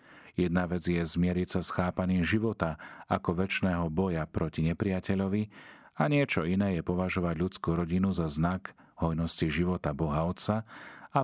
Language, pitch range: Slovak, 85-105 Hz